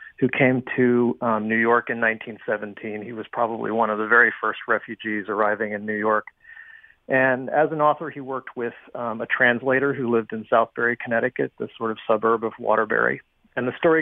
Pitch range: 110-130 Hz